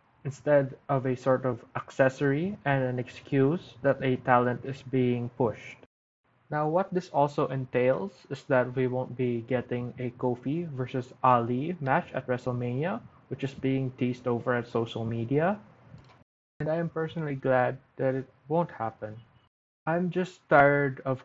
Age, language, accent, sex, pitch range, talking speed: 20-39, English, Filipino, male, 125-145 Hz, 155 wpm